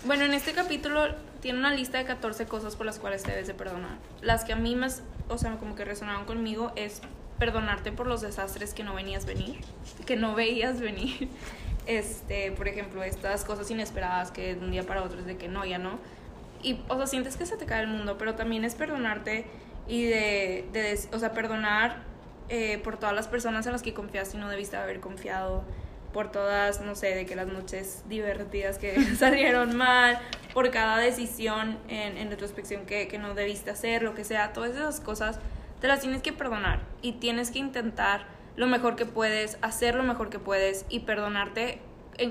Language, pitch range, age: Spanish, 200-240 Hz, 10-29